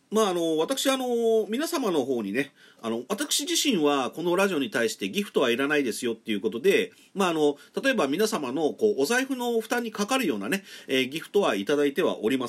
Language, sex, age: Japanese, male, 40-59